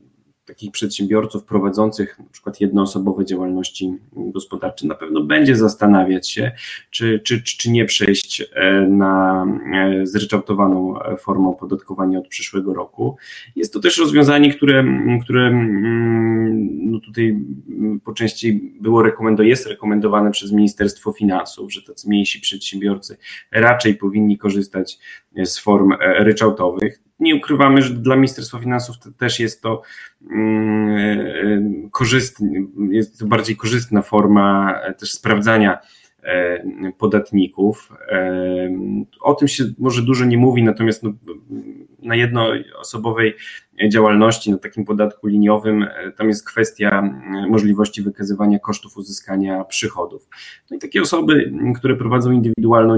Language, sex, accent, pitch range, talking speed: Polish, male, native, 100-120 Hz, 115 wpm